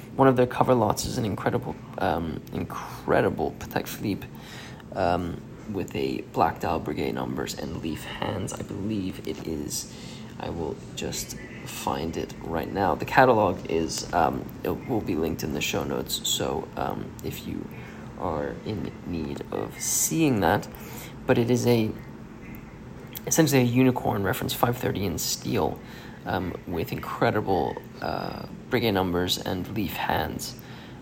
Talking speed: 150 wpm